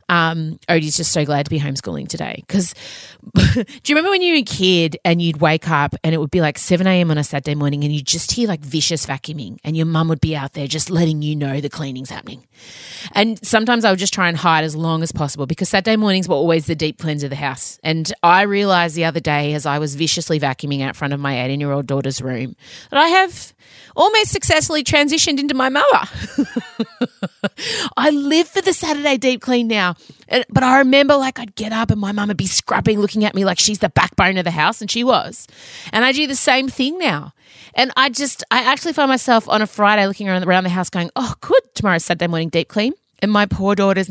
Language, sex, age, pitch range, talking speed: English, female, 30-49, 155-245 Hz, 235 wpm